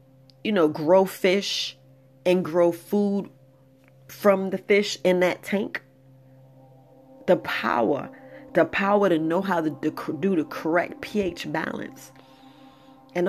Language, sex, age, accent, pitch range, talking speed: English, female, 40-59, American, 135-195 Hz, 120 wpm